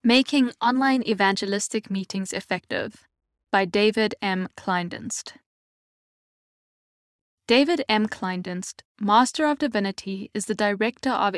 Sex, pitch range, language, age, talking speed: female, 195-245 Hz, English, 10-29, 100 wpm